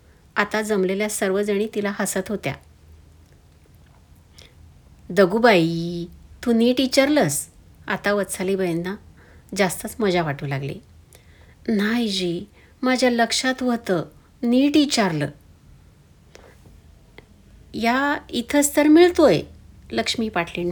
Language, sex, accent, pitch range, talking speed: Marathi, female, native, 170-240 Hz, 80 wpm